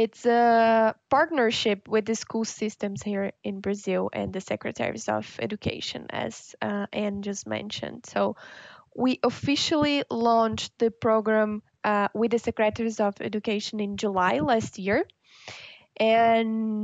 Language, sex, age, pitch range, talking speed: English, female, 20-39, 205-235 Hz, 130 wpm